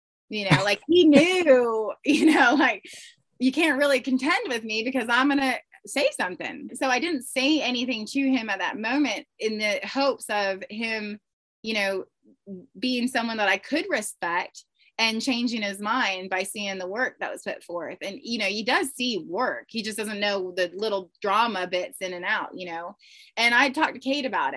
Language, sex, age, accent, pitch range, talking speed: English, female, 20-39, American, 200-260 Hz, 200 wpm